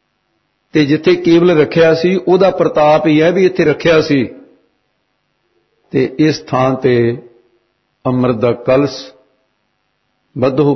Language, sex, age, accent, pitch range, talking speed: English, male, 60-79, Indian, 130-185 Hz, 115 wpm